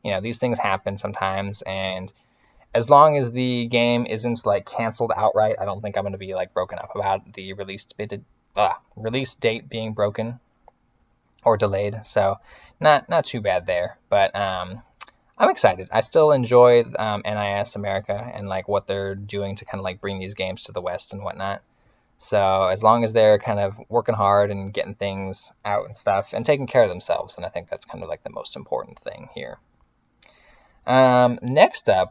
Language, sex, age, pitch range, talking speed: English, male, 20-39, 100-120 Hz, 195 wpm